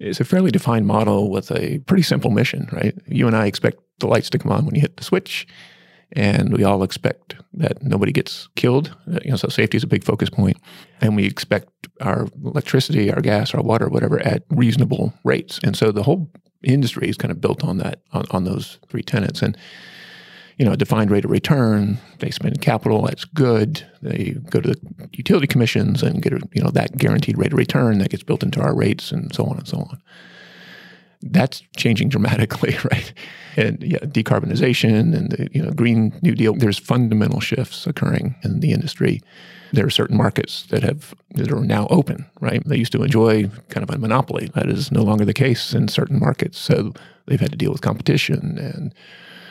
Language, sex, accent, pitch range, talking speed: English, male, American, 110-155 Hz, 205 wpm